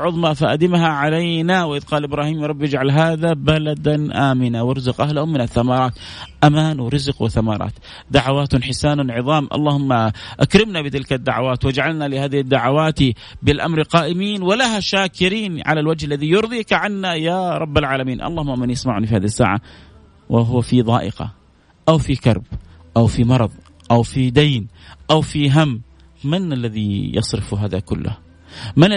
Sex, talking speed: male, 145 wpm